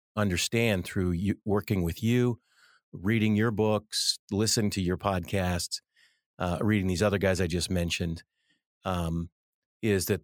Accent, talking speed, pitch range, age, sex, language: American, 140 wpm, 90-105 Hz, 40-59, male, English